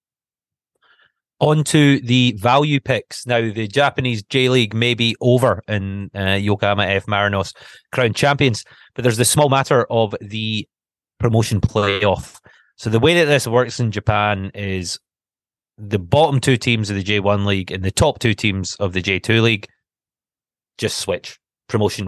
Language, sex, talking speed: English, male, 155 wpm